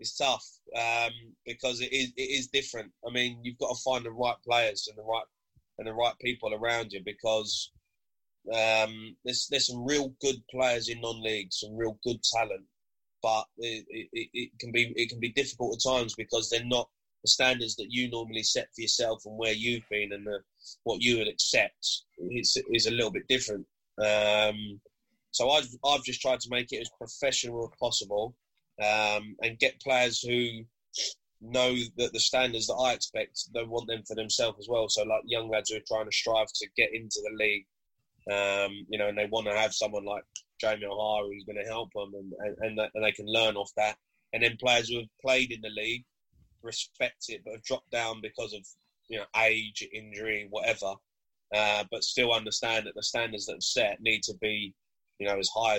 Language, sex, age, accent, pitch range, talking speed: English, male, 20-39, British, 105-120 Hz, 205 wpm